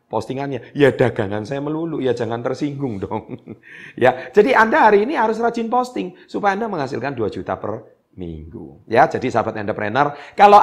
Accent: native